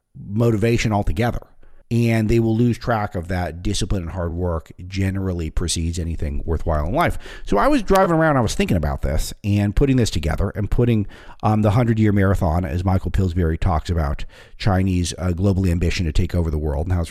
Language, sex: English, male